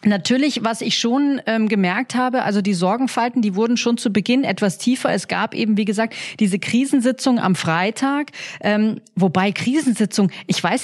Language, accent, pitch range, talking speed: German, German, 190-235 Hz, 170 wpm